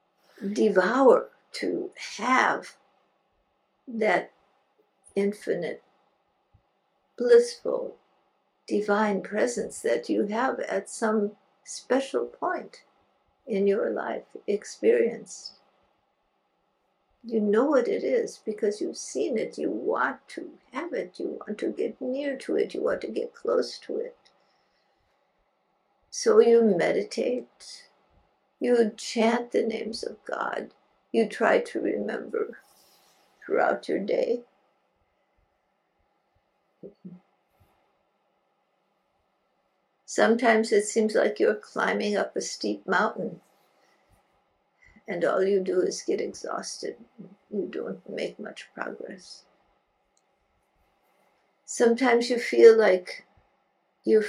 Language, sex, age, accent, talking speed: English, female, 60-79, American, 100 wpm